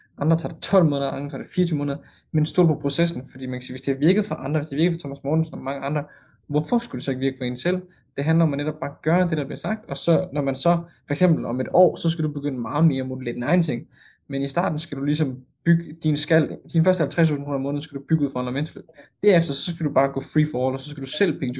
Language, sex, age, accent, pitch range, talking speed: Danish, male, 20-39, native, 130-160 Hz, 295 wpm